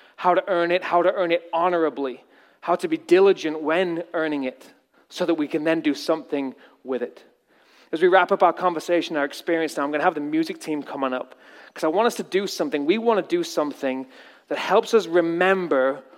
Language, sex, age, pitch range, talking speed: English, male, 30-49, 160-205 Hz, 225 wpm